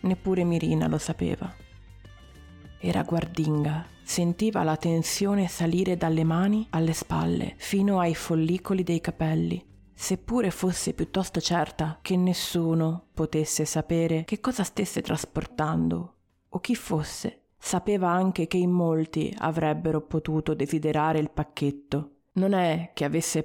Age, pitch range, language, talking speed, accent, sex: 30-49, 155-185 Hz, Italian, 125 wpm, native, female